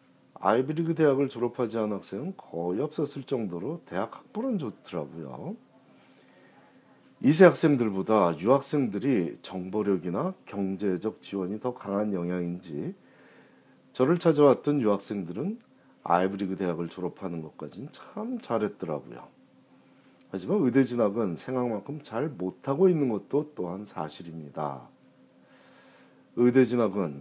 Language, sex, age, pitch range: Korean, male, 40-59, 90-130 Hz